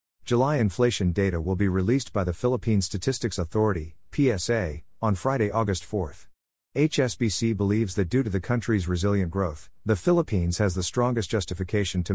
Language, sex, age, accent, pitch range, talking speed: English, male, 50-69, American, 90-115 Hz, 160 wpm